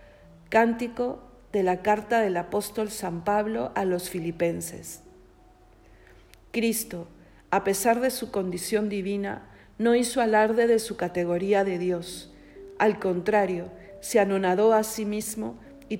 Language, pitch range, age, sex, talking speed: Spanish, 185-225 Hz, 50-69, female, 130 wpm